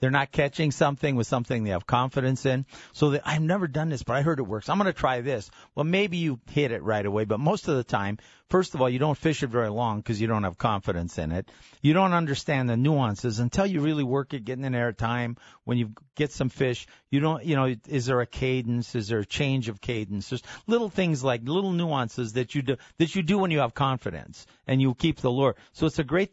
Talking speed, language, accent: 255 wpm, English, American